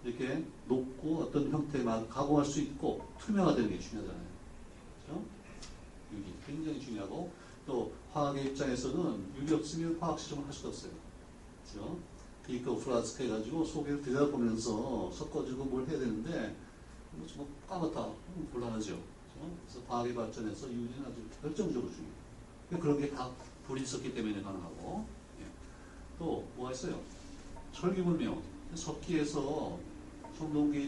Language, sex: Korean, male